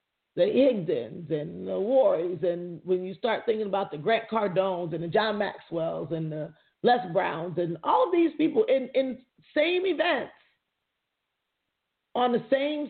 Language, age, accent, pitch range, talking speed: English, 40-59, American, 205-285 Hz, 160 wpm